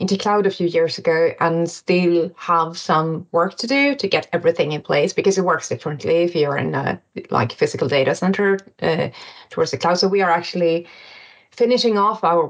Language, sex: English, female